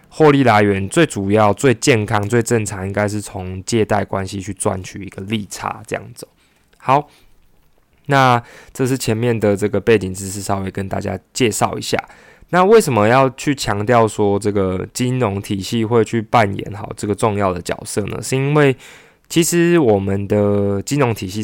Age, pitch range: 20-39, 100-120 Hz